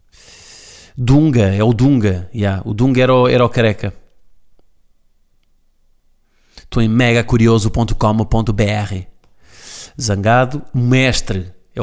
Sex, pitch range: male, 105-125 Hz